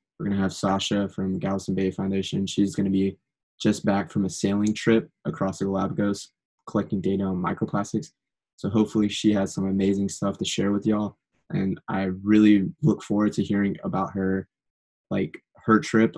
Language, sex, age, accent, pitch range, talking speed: English, male, 20-39, American, 95-105 Hz, 180 wpm